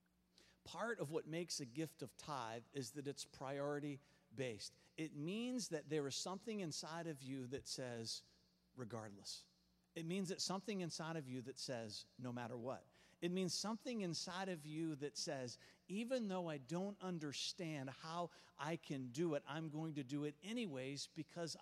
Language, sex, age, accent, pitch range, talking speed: English, male, 50-69, American, 145-195 Hz, 170 wpm